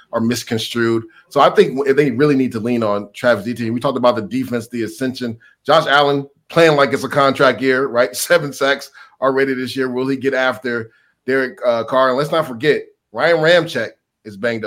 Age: 30-49